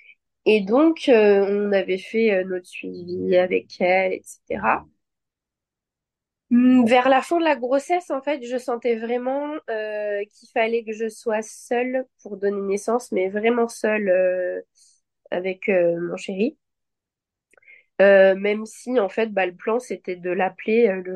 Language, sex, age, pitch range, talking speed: French, female, 20-39, 190-250 Hz, 155 wpm